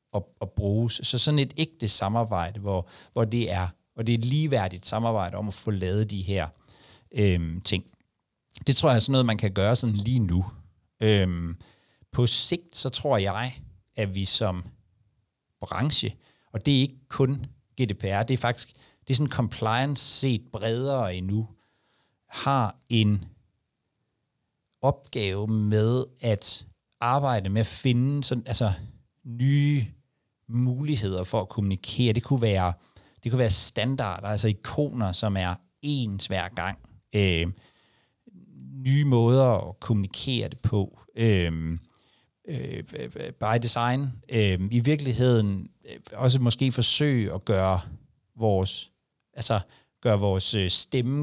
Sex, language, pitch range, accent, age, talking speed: male, Danish, 100-125 Hz, native, 60-79, 135 wpm